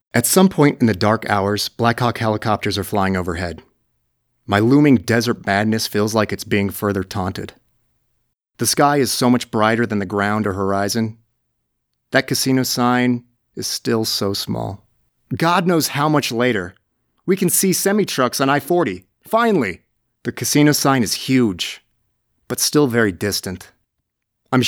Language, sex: English, male